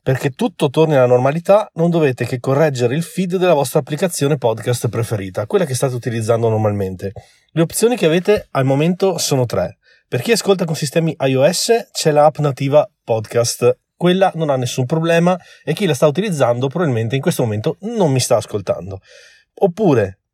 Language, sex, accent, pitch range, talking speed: Italian, male, native, 120-170 Hz, 170 wpm